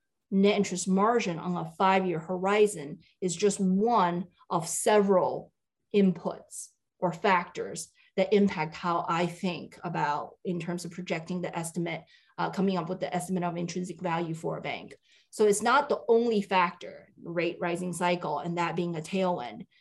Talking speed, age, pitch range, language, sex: 160 wpm, 30-49, 175-200 Hz, English, female